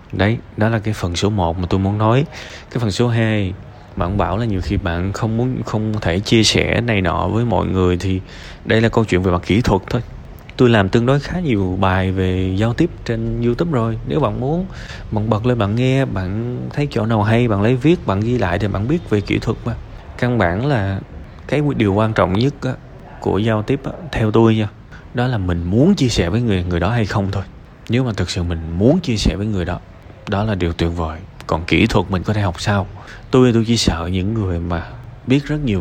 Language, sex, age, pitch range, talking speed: Vietnamese, male, 20-39, 90-115 Hz, 240 wpm